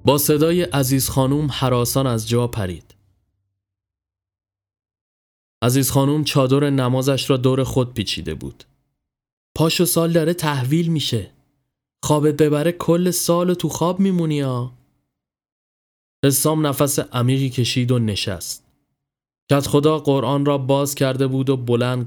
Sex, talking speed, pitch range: male, 125 wpm, 120-150 Hz